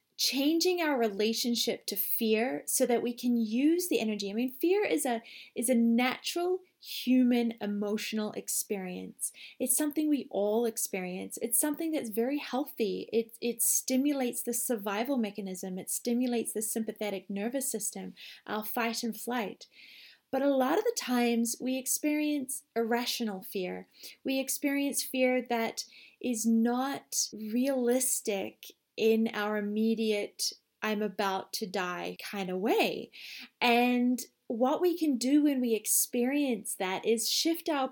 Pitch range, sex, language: 220-275 Hz, female, English